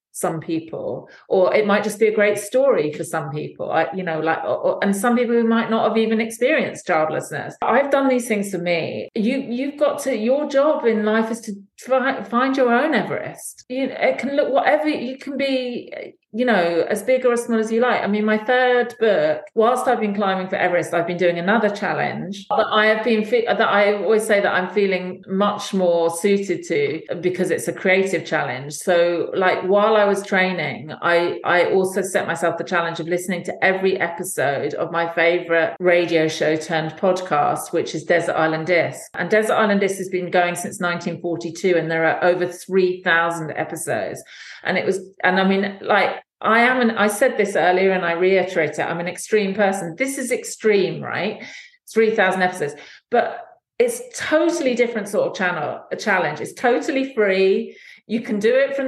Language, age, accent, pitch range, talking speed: English, 40-59, British, 175-235 Hz, 195 wpm